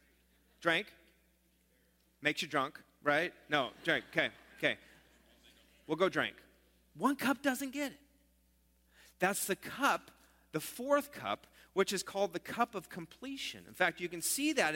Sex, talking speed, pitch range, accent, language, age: male, 145 wpm, 180-245 Hz, American, English, 40-59